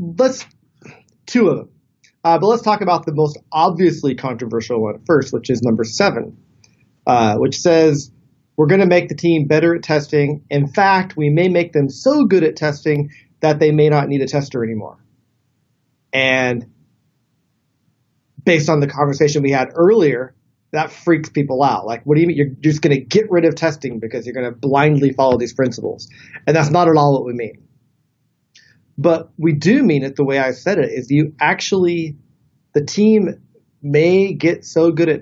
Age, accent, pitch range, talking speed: 30-49, American, 130-160 Hz, 185 wpm